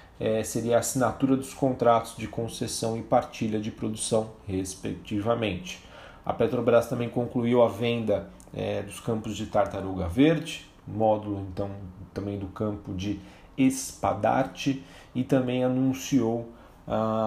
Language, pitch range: Portuguese, 105-120 Hz